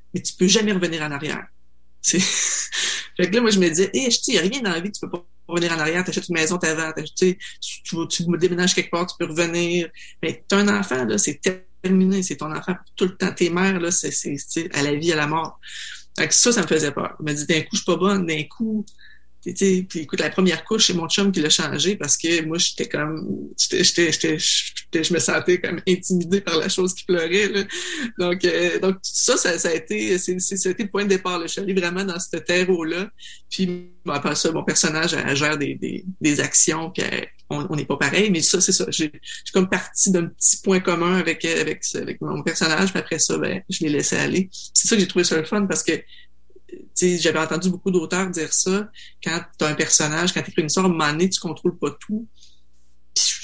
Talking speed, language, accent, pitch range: 250 wpm, French, Canadian, 160-195 Hz